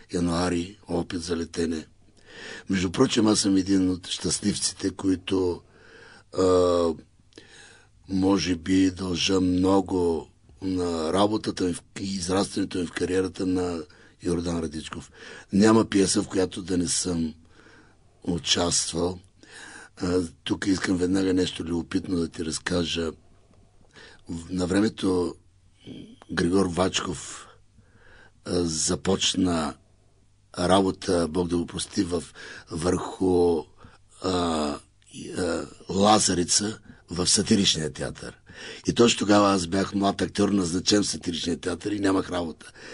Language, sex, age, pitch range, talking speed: Bulgarian, male, 60-79, 85-95 Hz, 105 wpm